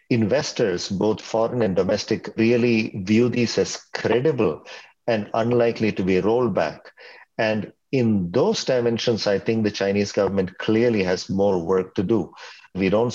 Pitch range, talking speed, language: 100-115 Hz, 150 wpm, English